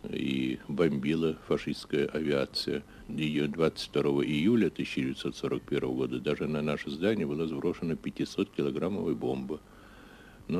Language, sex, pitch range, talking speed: Russian, male, 70-90 Hz, 100 wpm